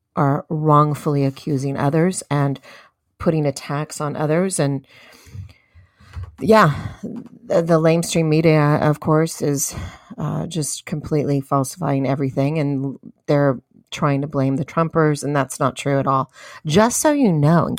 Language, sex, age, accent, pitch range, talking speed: English, female, 40-59, American, 145-170 Hz, 140 wpm